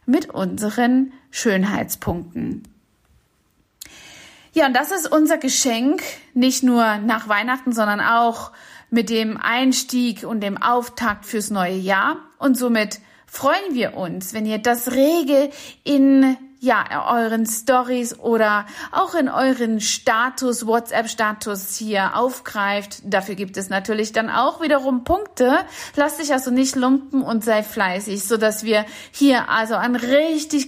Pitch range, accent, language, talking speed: 210-265 Hz, German, German, 135 wpm